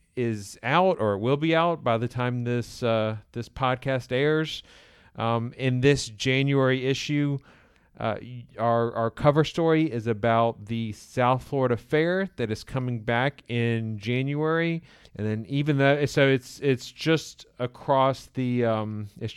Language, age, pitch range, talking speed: English, 40-59, 115-135 Hz, 150 wpm